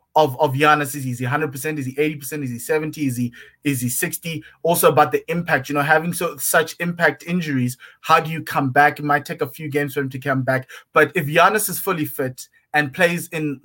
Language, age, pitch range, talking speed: English, 20-39, 140-160 Hz, 225 wpm